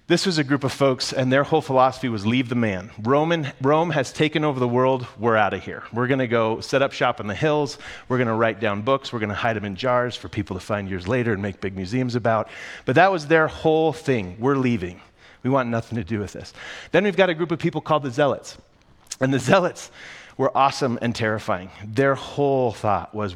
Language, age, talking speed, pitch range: English, 30-49, 245 wpm, 105-135 Hz